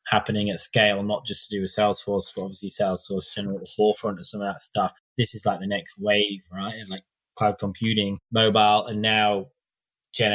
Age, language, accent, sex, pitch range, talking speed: 20-39, English, British, male, 95-110 Hz, 190 wpm